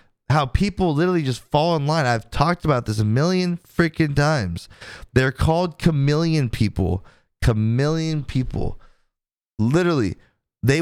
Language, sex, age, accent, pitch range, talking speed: English, male, 30-49, American, 105-140 Hz, 130 wpm